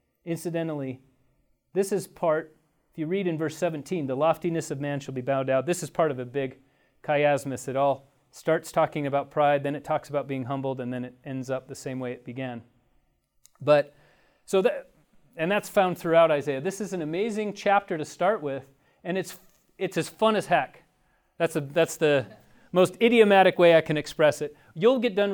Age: 30-49